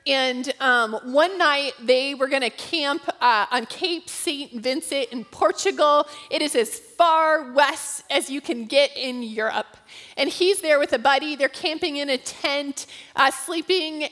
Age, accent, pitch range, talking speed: 30-49, American, 240-315 Hz, 165 wpm